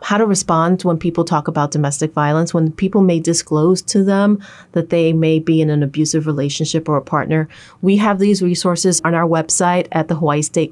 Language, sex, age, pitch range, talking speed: English, female, 30-49, 160-190 Hz, 205 wpm